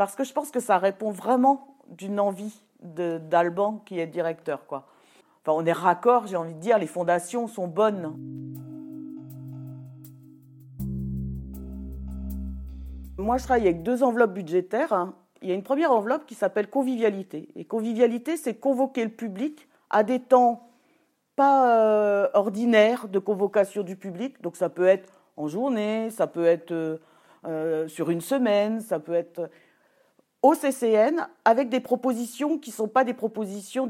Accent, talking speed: French, 150 wpm